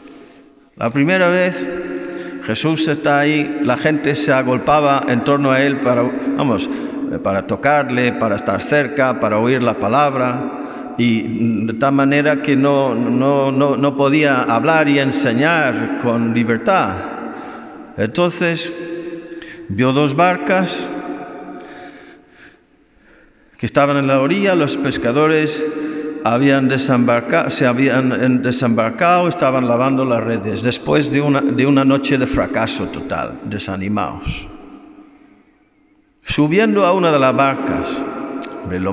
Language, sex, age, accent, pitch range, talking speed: Spanish, male, 50-69, Spanish, 115-155 Hz, 115 wpm